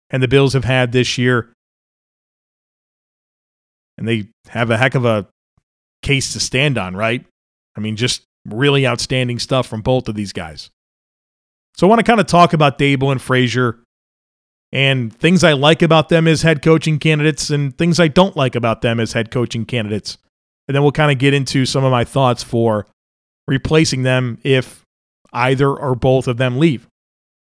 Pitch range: 115-145 Hz